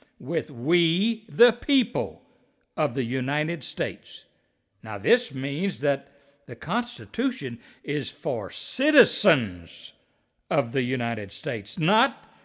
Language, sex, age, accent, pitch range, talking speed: English, male, 60-79, American, 145-235 Hz, 105 wpm